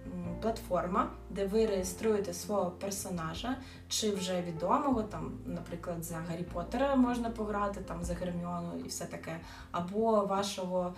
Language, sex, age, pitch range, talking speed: Ukrainian, female, 20-39, 180-220 Hz, 130 wpm